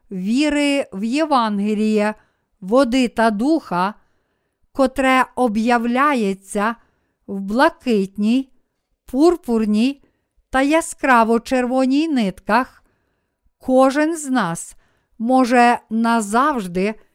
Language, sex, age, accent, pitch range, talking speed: Ukrainian, female, 50-69, native, 220-275 Hz, 65 wpm